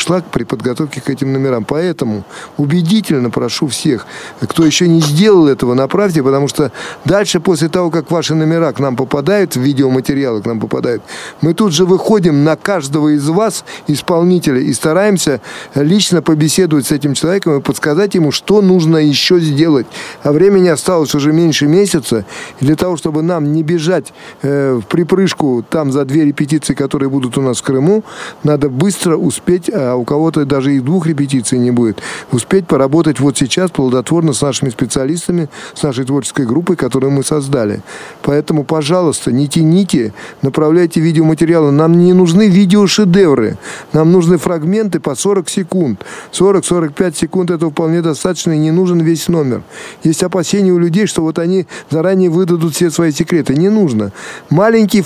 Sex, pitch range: male, 140-180 Hz